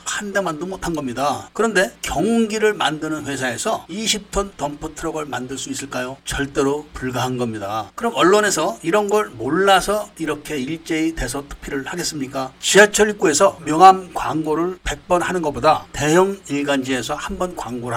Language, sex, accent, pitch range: Korean, male, native, 140-200 Hz